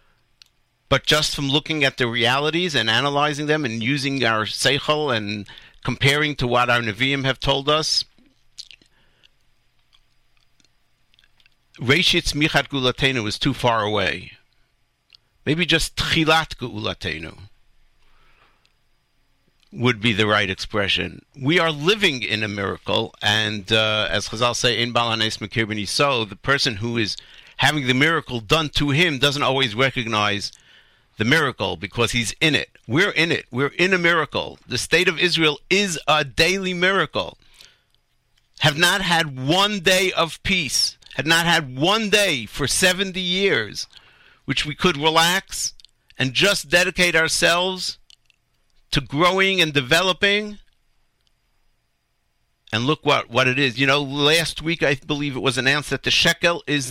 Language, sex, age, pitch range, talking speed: English, male, 50-69, 120-165 Hz, 140 wpm